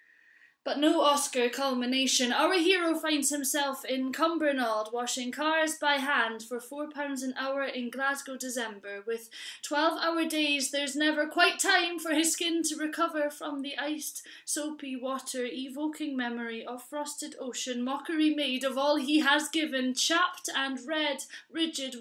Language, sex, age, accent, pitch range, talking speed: English, female, 20-39, British, 230-295 Hz, 145 wpm